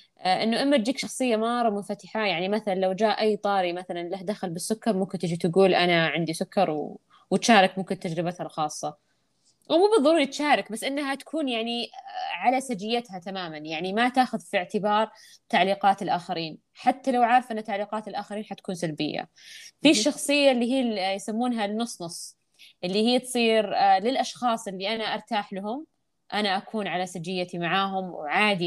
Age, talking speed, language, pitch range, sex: 20-39, 155 wpm, Arabic, 185-235 Hz, female